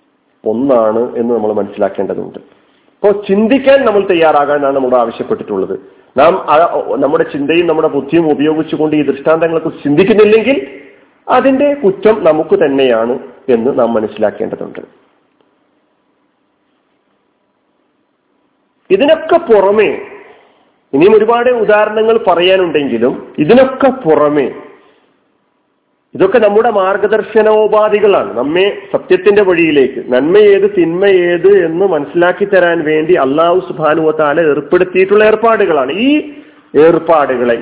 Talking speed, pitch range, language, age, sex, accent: 85 wpm, 135-225 Hz, Malayalam, 40-59, male, native